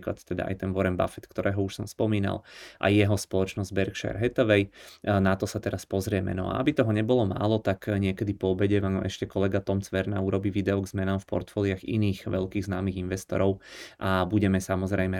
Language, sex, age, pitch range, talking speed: Czech, male, 20-39, 95-105 Hz, 185 wpm